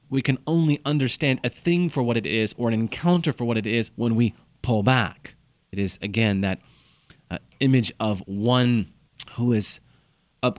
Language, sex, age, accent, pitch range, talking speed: English, male, 30-49, American, 115-155 Hz, 180 wpm